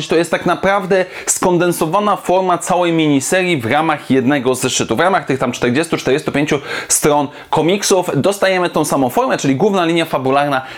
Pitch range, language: 150-195 Hz, Polish